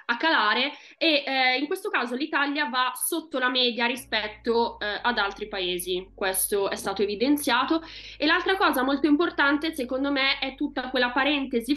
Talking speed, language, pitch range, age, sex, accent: 165 wpm, Italian, 220-270 Hz, 20-39, female, native